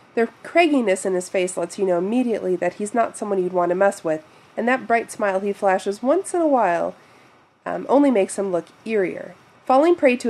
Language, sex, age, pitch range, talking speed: English, female, 30-49, 180-230 Hz, 215 wpm